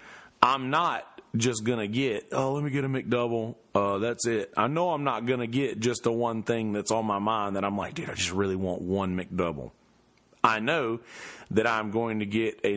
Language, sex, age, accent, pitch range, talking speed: English, male, 40-59, American, 100-125 Hz, 225 wpm